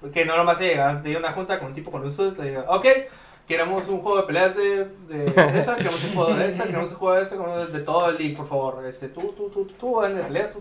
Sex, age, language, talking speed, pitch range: male, 20-39, Spanish, 285 wpm, 140-175 Hz